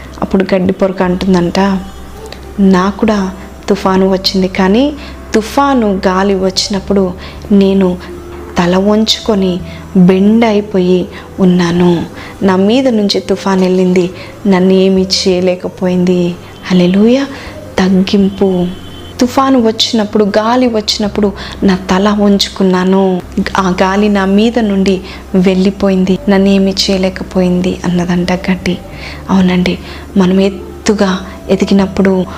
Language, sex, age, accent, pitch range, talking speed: Telugu, female, 20-39, native, 185-205 Hz, 85 wpm